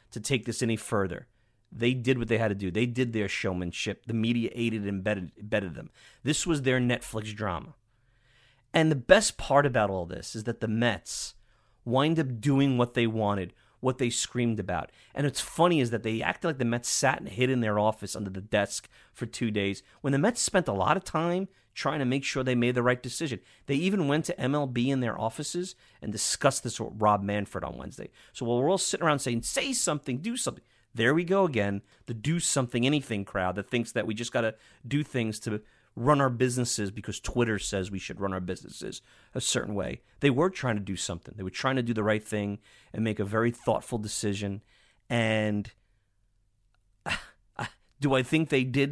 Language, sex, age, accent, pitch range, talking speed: English, male, 30-49, American, 105-130 Hz, 215 wpm